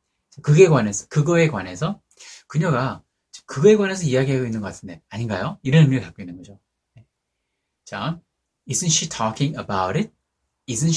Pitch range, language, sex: 120-160 Hz, Korean, male